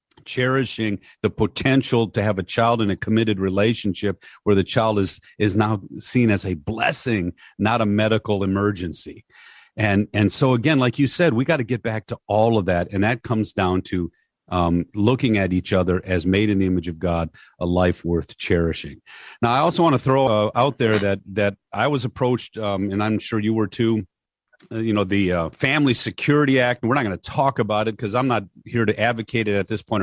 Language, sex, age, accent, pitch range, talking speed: English, male, 40-59, American, 95-120 Hz, 215 wpm